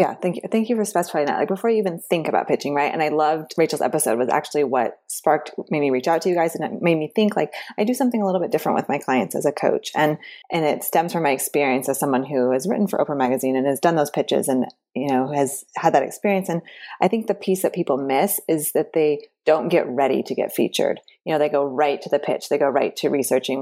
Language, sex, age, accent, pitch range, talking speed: English, female, 20-39, American, 145-195 Hz, 275 wpm